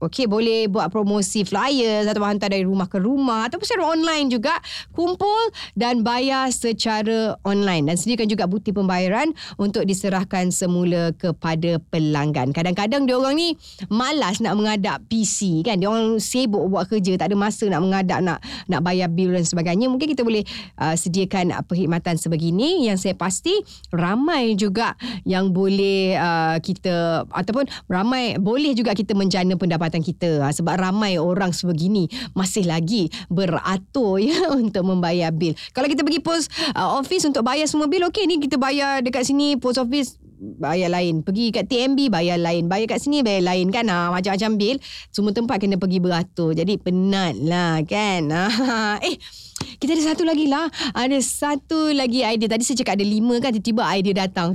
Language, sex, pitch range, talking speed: Malay, female, 185-255 Hz, 165 wpm